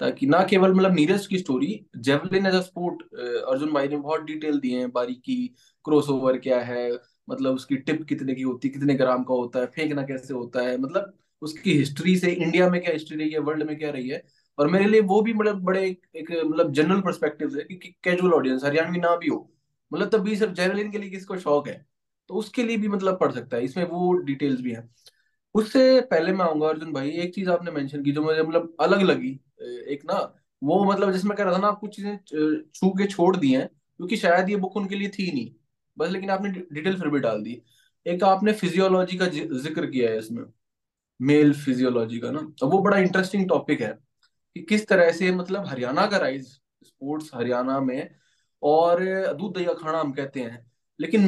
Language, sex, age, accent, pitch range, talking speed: Hindi, male, 20-39, native, 145-195 Hz, 185 wpm